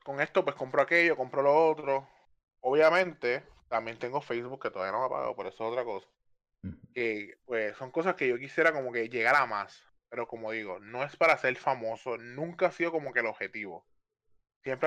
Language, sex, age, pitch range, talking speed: Spanish, male, 20-39, 105-140 Hz, 205 wpm